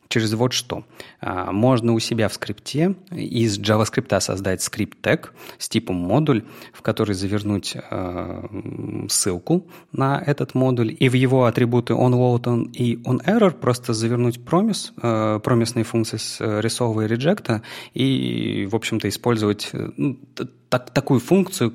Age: 30-49